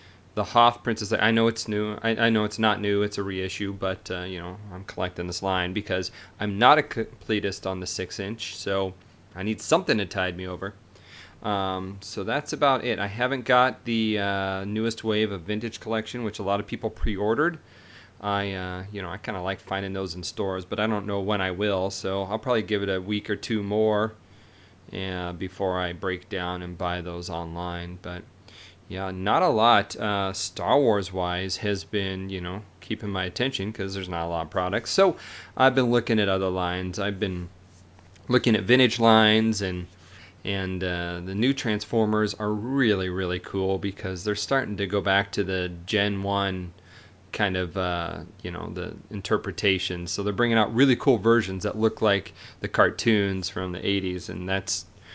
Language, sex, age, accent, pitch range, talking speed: English, male, 30-49, American, 95-110 Hz, 195 wpm